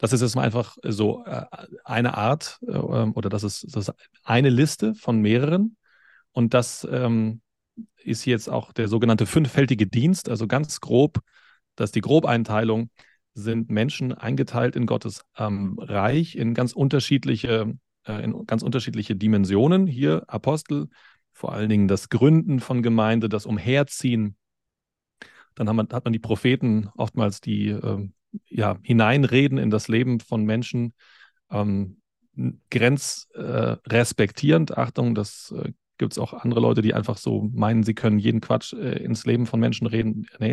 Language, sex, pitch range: German, male, 110-130 Hz